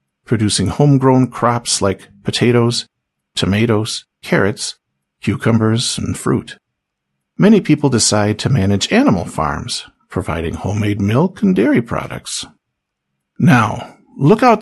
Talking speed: 105 wpm